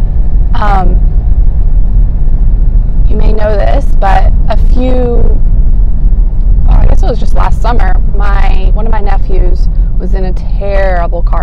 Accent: American